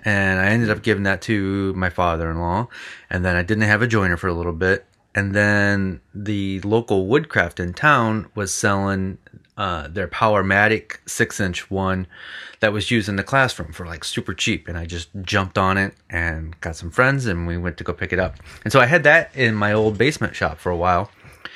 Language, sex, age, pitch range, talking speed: English, male, 30-49, 95-110 Hz, 210 wpm